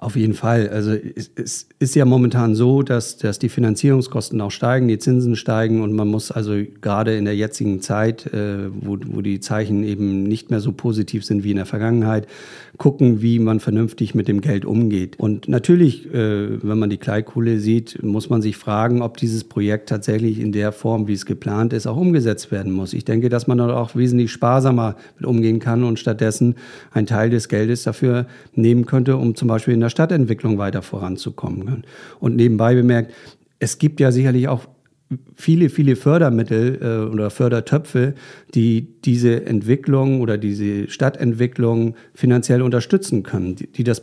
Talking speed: 175 wpm